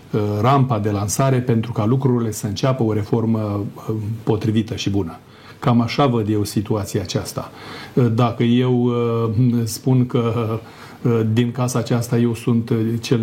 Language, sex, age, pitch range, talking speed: Romanian, male, 40-59, 115-130 Hz, 130 wpm